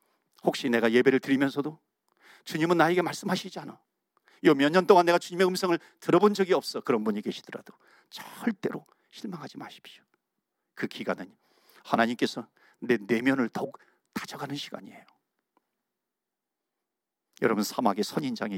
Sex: male